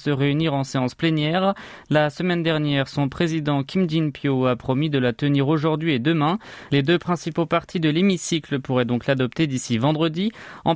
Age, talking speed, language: 20-39, 180 wpm, French